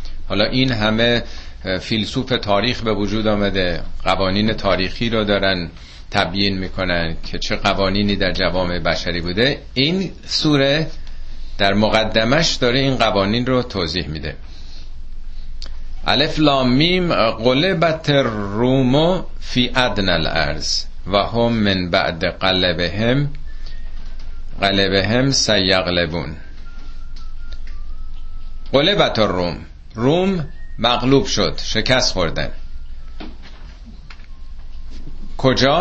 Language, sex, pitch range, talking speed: Persian, male, 75-115 Hz, 85 wpm